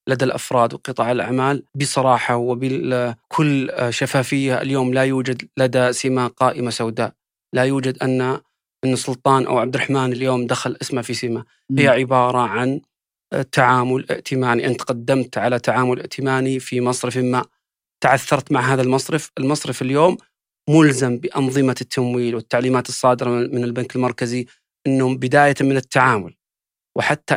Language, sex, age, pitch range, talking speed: Arabic, male, 30-49, 125-145 Hz, 130 wpm